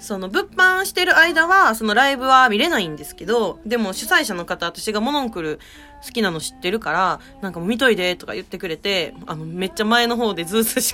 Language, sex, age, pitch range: Japanese, female, 20-39, 190-290 Hz